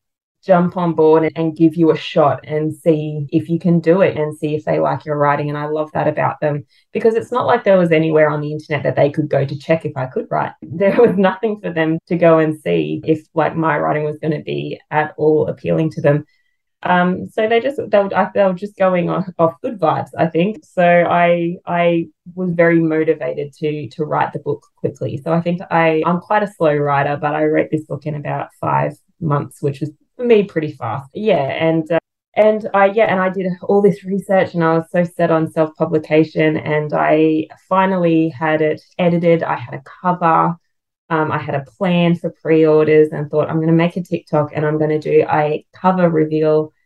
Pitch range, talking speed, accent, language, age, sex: 150-180 Hz, 220 wpm, Australian, English, 20-39, female